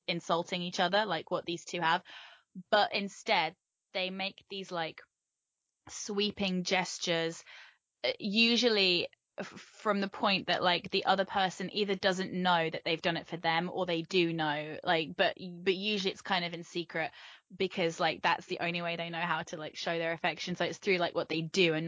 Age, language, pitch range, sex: 10-29, English, 170-195 Hz, female